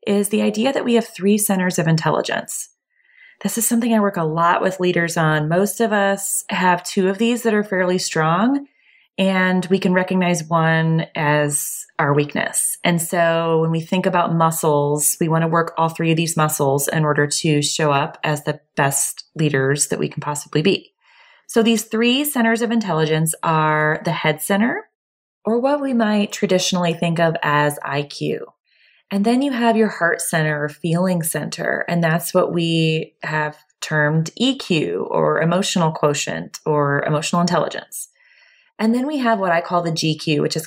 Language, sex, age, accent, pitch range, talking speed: English, female, 20-39, American, 155-200 Hz, 180 wpm